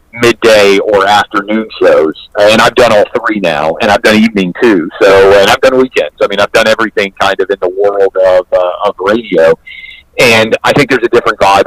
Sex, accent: male, American